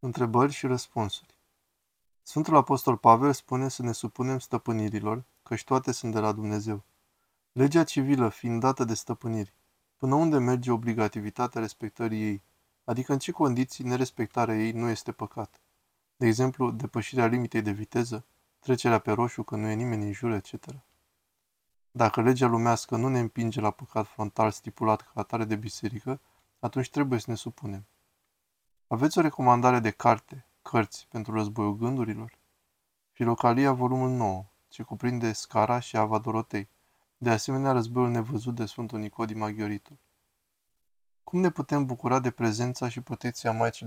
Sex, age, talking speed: male, 20-39, 150 wpm